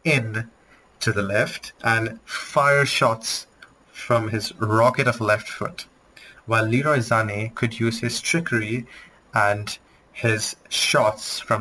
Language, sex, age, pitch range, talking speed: English, male, 30-49, 115-145 Hz, 125 wpm